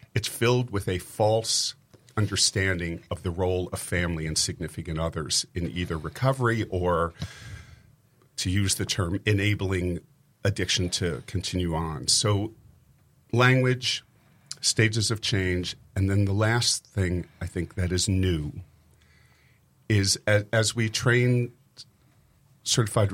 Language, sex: English, male